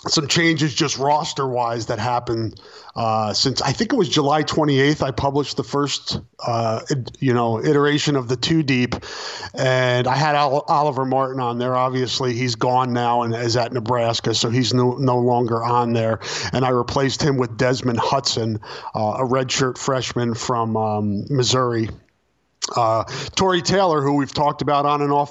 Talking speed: 180 wpm